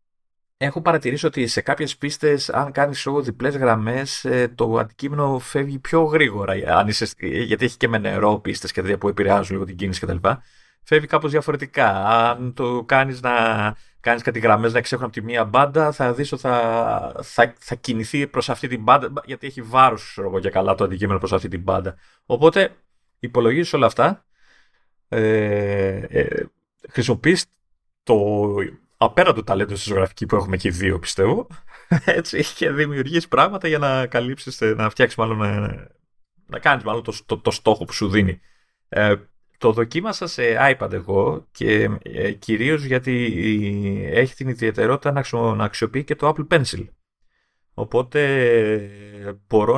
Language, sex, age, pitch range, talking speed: Greek, male, 30-49, 100-140 Hz, 145 wpm